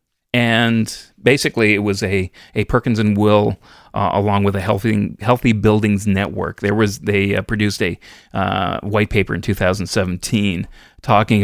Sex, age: male, 30-49